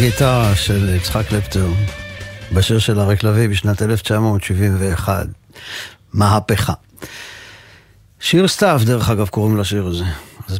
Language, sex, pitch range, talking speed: Hebrew, male, 100-125 Hz, 110 wpm